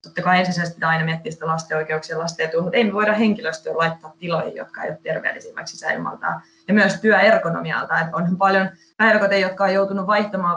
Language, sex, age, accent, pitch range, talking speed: Finnish, female, 20-39, native, 165-190 Hz, 180 wpm